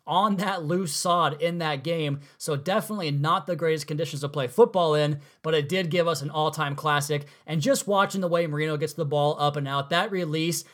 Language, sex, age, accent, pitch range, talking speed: English, male, 20-39, American, 145-175 Hz, 220 wpm